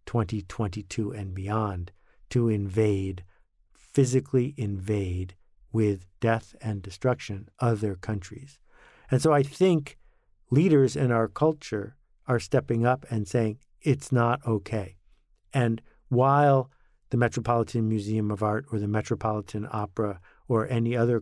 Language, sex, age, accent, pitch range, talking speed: English, male, 50-69, American, 105-135 Hz, 120 wpm